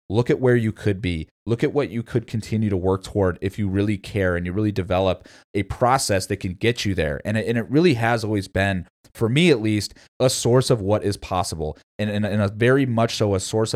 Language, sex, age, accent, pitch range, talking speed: English, male, 30-49, American, 100-130 Hz, 230 wpm